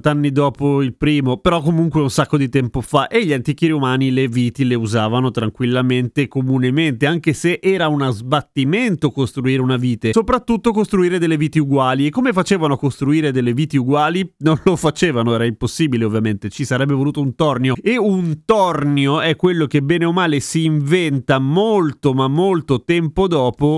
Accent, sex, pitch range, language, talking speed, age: native, male, 135-180 Hz, Italian, 175 wpm, 30-49